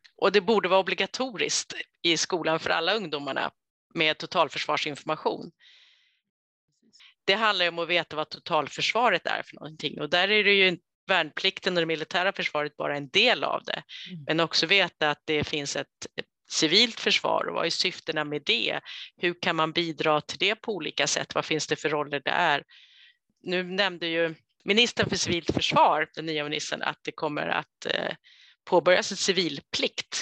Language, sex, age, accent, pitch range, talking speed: Swedish, female, 30-49, native, 160-195 Hz, 170 wpm